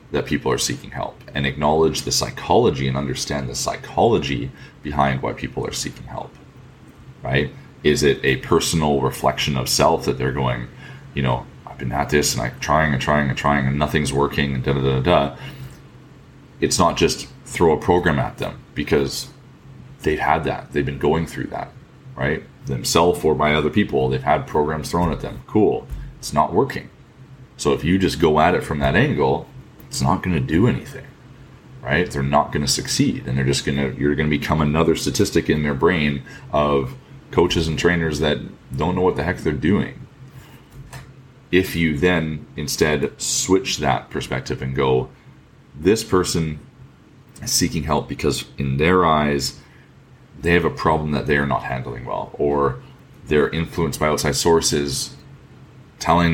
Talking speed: 180 wpm